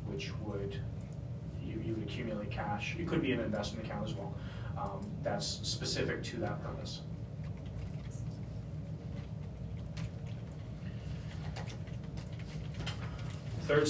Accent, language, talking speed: American, English, 90 wpm